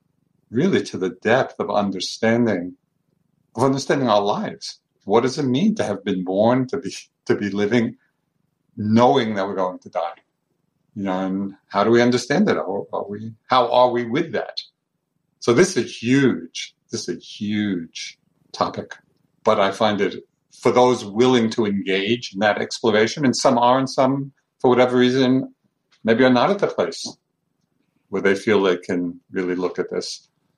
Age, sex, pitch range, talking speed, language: 50-69, male, 105-150 Hz, 175 wpm, English